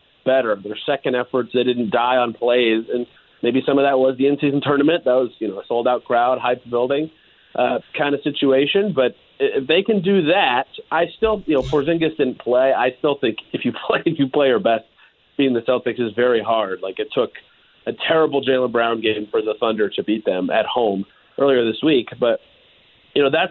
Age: 40-59